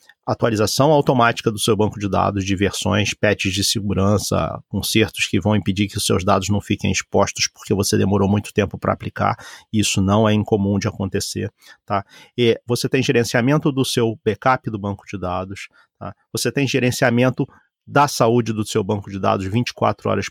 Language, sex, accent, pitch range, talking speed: Portuguese, male, Brazilian, 105-145 Hz, 180 wpm